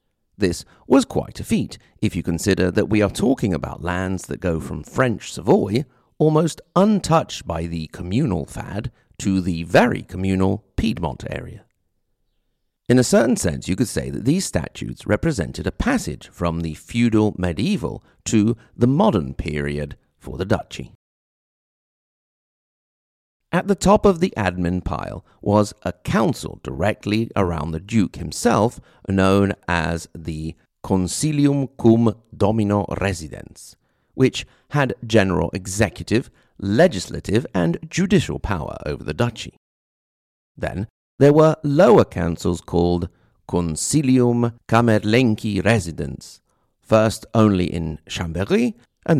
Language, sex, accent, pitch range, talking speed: English, male, British, 85-120 Hz, 125 wpm